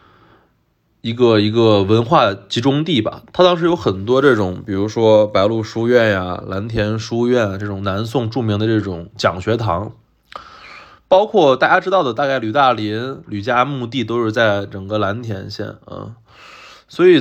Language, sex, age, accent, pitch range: Chinese, male, 20-39, native, 100-125 Hz